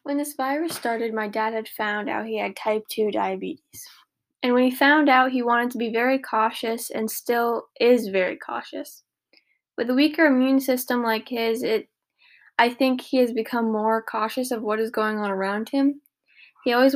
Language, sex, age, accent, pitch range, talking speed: English, female, 10-29, American, 210-260 Hz, 190 wpm